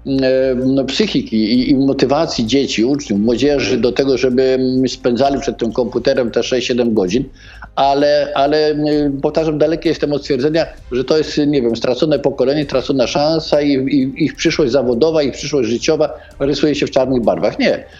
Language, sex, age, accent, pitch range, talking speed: Polish, male, 50-69, native, 120-140 Hz, 155 wpm